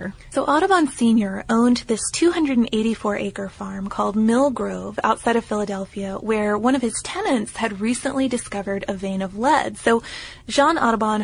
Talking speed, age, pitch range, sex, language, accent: 155 wpm, 20-39, 195-230 Hz, female, English, American